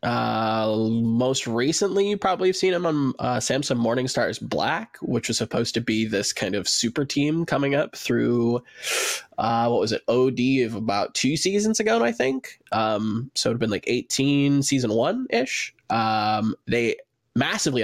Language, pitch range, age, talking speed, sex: English, 120-150 Hz, 20-39, 170 wpm, male